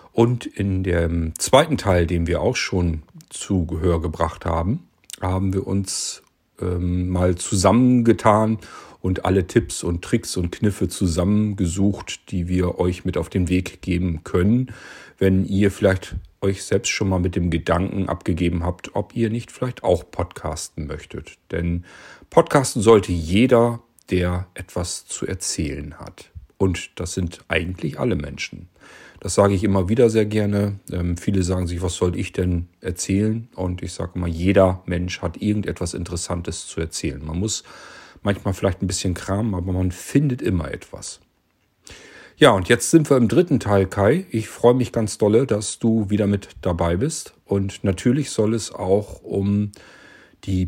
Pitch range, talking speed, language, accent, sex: 90-105 Hz, 160 wpm, German, German, male